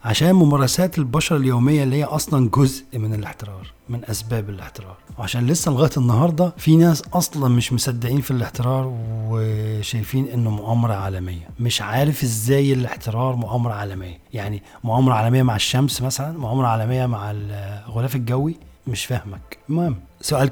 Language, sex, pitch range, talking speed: Arabic, male, 110-140 Hz, 145 wpm